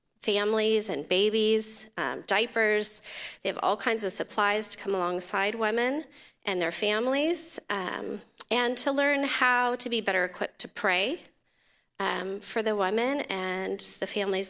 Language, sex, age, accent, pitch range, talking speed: English, female, 30-49, American, 185-235 Hz, 150 wpm